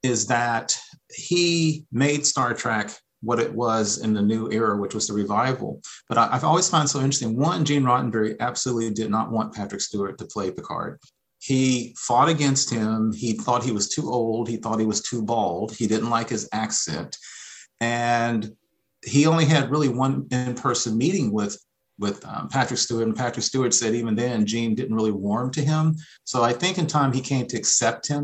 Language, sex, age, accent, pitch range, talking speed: English, male, 40-59, American, 110-130 Hz, 200 wpm